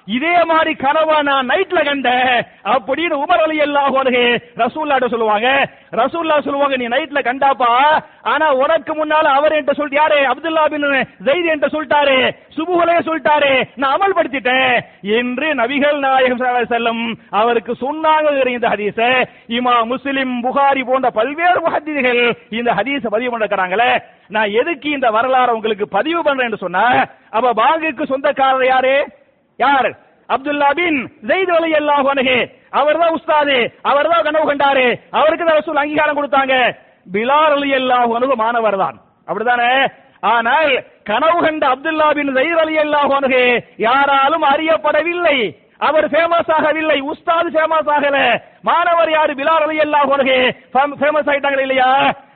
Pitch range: 250-310 Hz